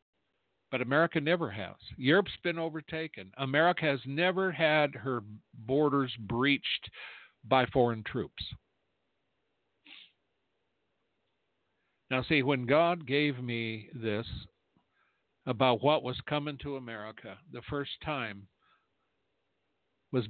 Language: English